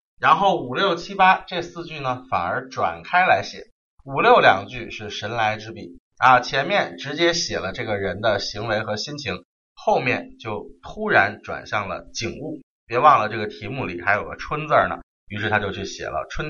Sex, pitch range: male, 105-170 Hz